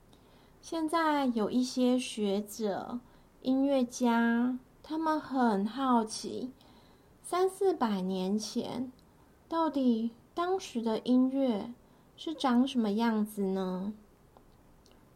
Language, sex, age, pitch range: Chinese, female, 30-49, 215-265 Hz